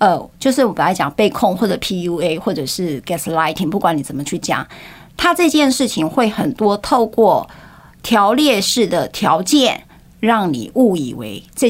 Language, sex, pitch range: Chinese, female, 170-240 Hz